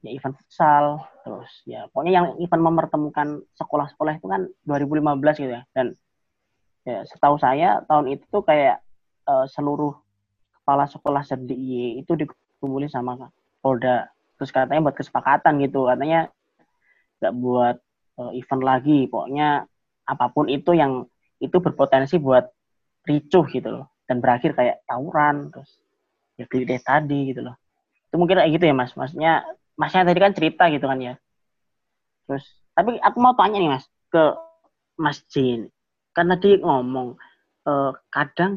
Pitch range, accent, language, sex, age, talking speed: 130-160 Hz, native, Indonesian, female, 20-39, 145 wpm